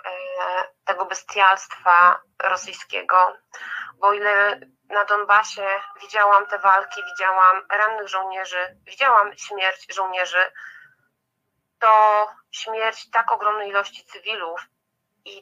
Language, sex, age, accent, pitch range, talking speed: Polish, female, 30-49, native, 190-240 Hz, 90 wpm